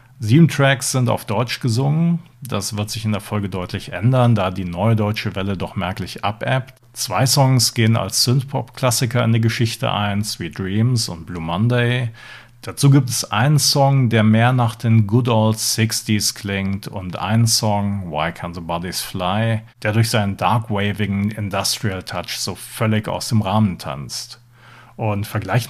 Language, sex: German, male